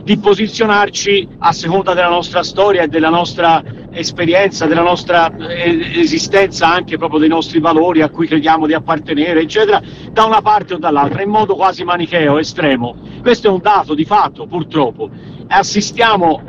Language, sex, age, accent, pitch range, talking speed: Italian, male, 50-69, native, 170-215 Hz, 155 wpm